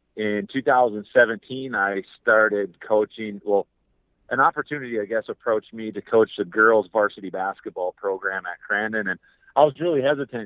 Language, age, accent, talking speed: English, 30-49, American, 150 wpm